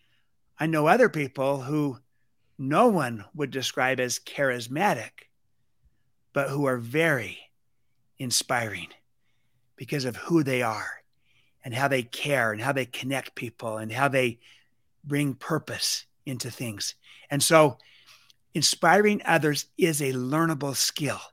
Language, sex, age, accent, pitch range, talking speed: Spanish, male, 50-69, American, 125-155 Hz, 125 wpm